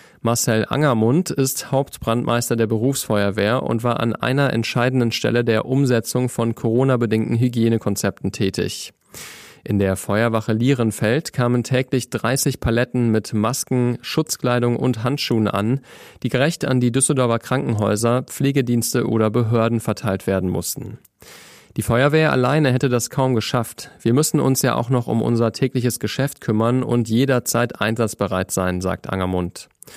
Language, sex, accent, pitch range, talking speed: German, male, German, 110-130 Hz, 135 wpm